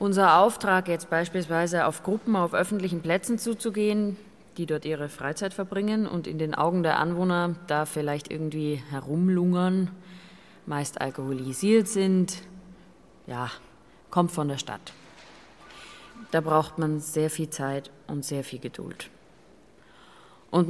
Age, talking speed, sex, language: 30-49, 130 wpm, female, German